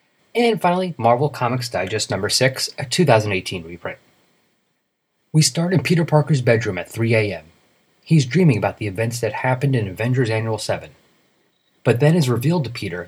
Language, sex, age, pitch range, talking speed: English, male, 30-49, 110-150 Hz, 165 wpm